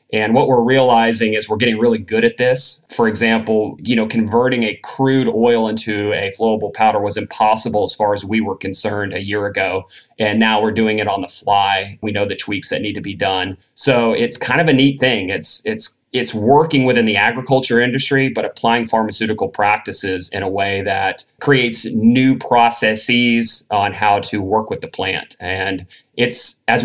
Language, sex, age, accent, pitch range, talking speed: English, male, 30-49, American, 105-125 Hz, 195 wpm